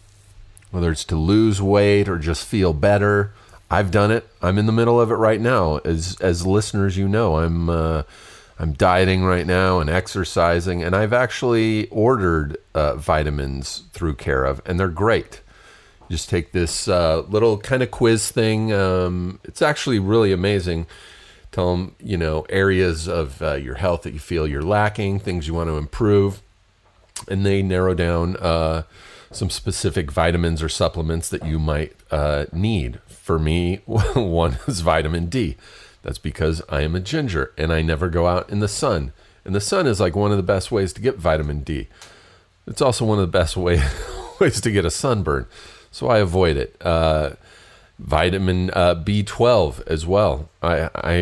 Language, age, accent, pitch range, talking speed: English, 40-59, American, 80-100 Hz, 180 wpm